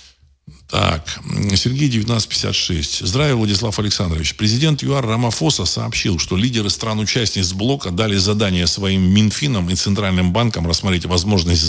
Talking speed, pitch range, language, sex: 120 wpm, 90-120 Hz, Russian, male